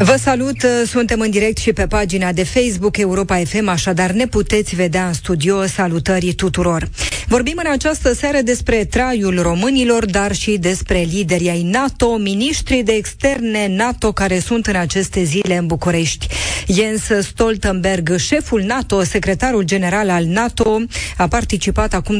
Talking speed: 150 wpm